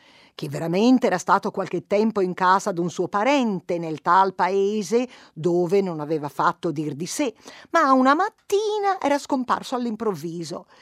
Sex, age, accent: female, 50-69, native